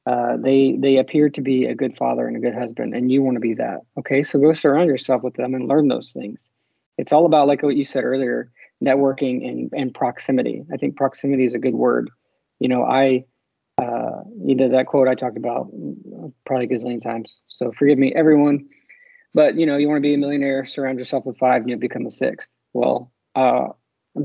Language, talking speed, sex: English, 220 wpm, male